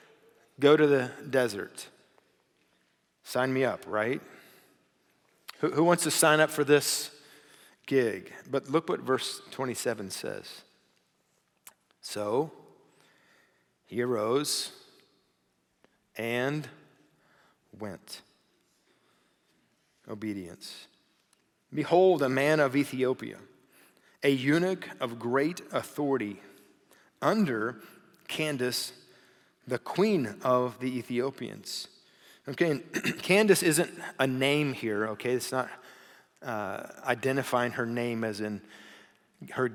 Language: English